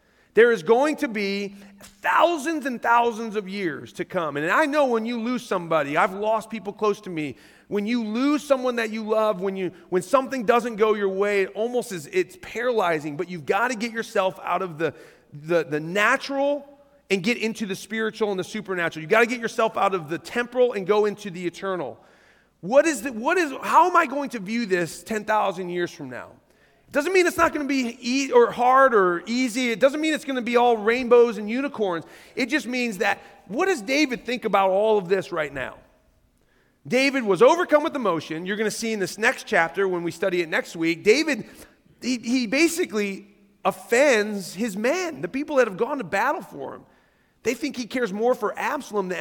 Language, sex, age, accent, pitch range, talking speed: English, male, 30-49, American, 195-255 Hz, 210 wpm